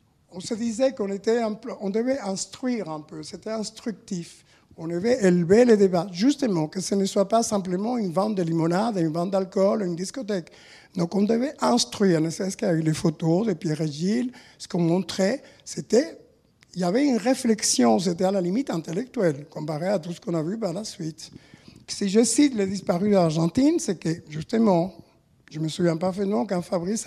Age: 60-79